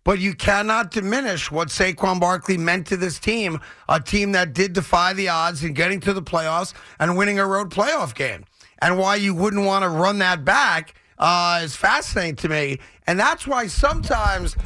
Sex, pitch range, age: male, 175-205 Hz, 40-59